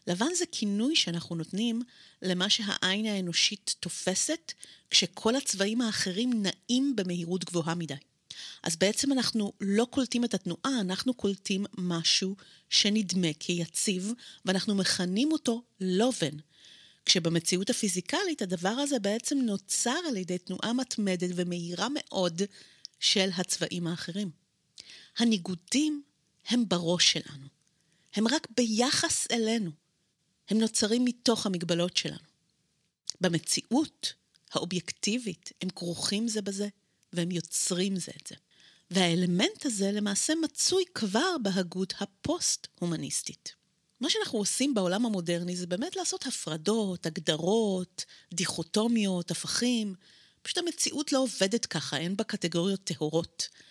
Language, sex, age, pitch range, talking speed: Hebrew, female, 30-49, 175-235 Hz, 110 wpm